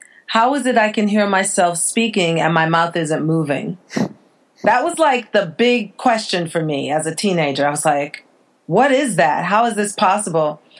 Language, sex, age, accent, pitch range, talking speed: English, female, 40-59, American, 165-210 Hz, 190 wpm